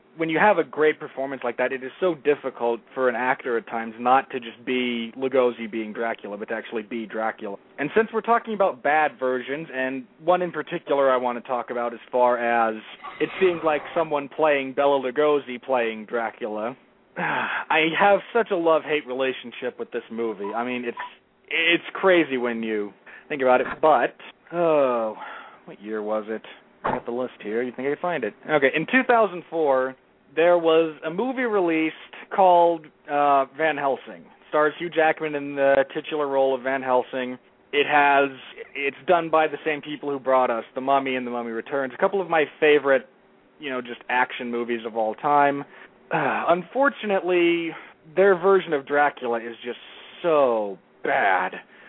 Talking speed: 180 wpm